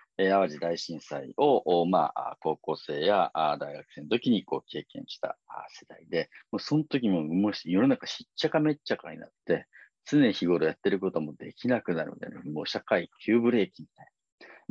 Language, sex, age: Japanese, male, 40-59